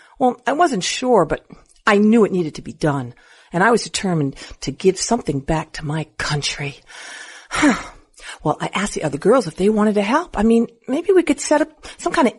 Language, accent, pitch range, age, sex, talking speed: English, American, 135-180 Hz, 50-69, female, 215 wpm